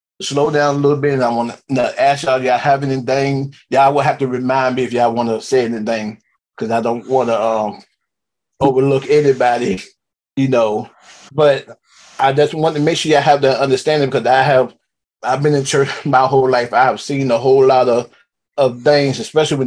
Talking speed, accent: 200 wpm, American